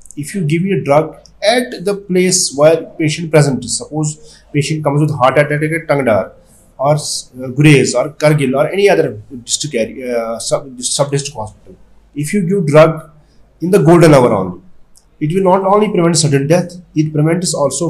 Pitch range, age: 130-160 Hz, 30-49